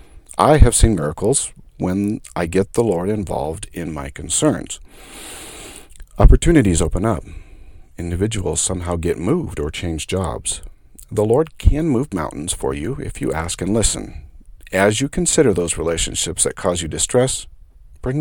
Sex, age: male, 50-69